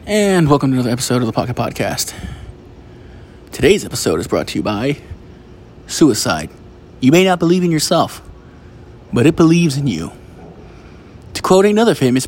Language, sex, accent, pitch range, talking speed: English, male, American, 110-155 Hz, 155 wpm